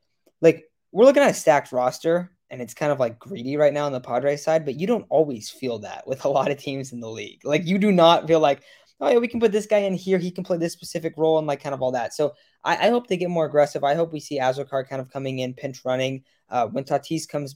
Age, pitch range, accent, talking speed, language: 10-29, 130-160 Hz, American, 285 wpm, English